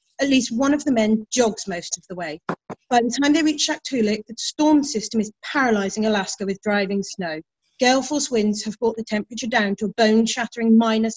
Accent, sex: British, female